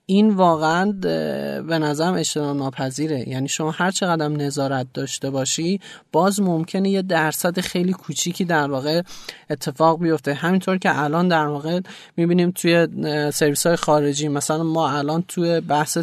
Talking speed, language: 140 wpm, Persian